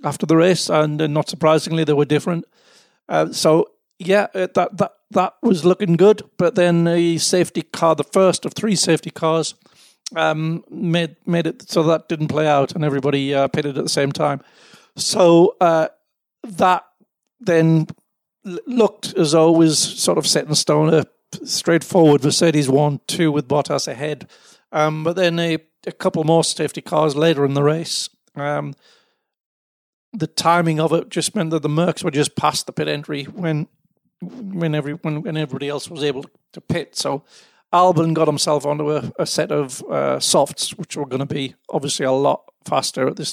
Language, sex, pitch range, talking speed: English, male, 150-180 Hz, 180 wpm